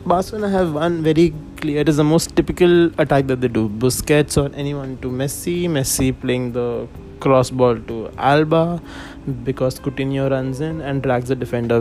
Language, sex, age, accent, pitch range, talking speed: English, male, 20-39, Indian, 115-150 Hz, 175 wpm